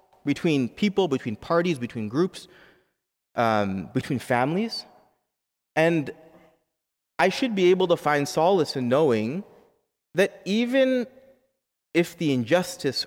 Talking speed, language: 110 wpm, English